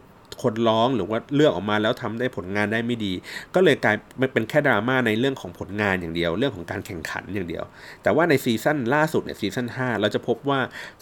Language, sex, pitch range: Thai, male, 110-145 Hz